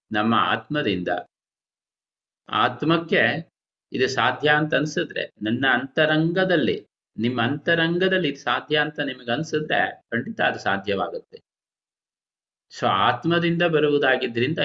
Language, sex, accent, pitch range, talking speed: Kannada, male, native, 115-155 Hz, 85 wpm